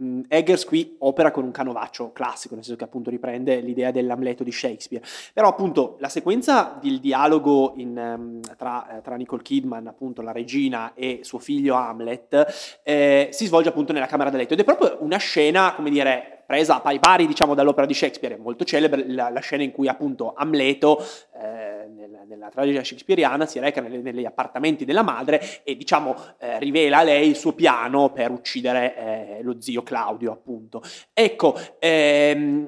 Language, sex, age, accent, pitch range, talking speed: Italian, male, 20-39, native, 125-160 Hz, 175 wpm